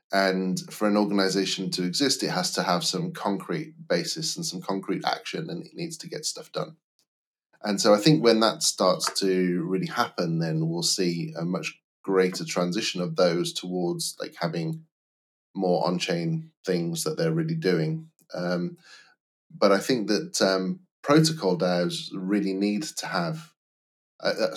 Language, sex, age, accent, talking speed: English, male, 30-49, British, 160 wpm